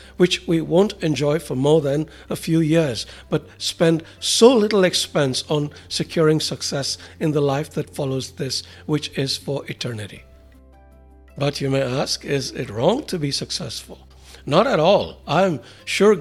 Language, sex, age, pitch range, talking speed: English, male, 60-79, 130-160 Hz, 160 wpm